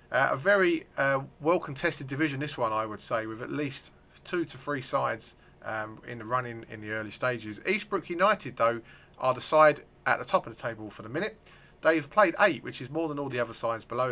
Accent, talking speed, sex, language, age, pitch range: British, 225 wpm, male, English, 30-49, 120-160 Hz